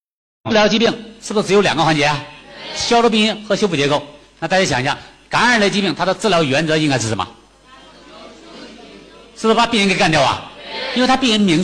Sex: male